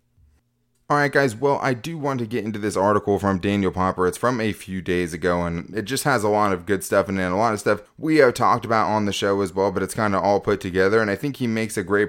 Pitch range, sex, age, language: 100-120 Hz, male, 20-39, English